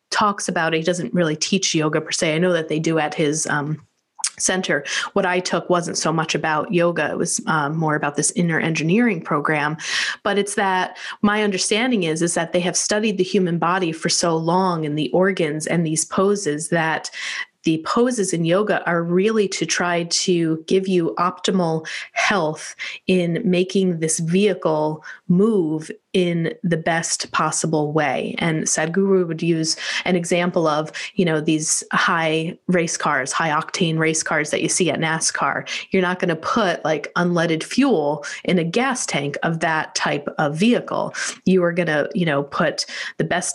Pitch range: 160-185 Hz